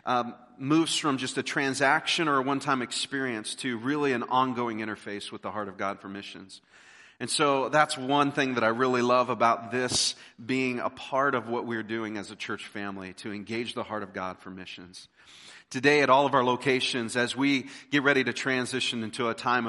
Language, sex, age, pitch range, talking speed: English, male, 40-59, 115-140 Hz, 205 wpm